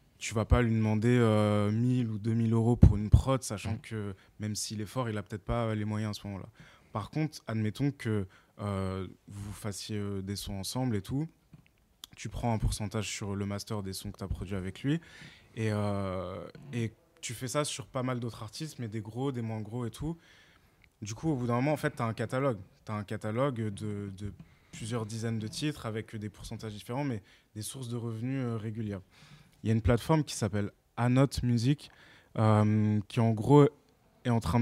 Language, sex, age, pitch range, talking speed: French, male, 20-39, 105-125 Hz, 215 wpm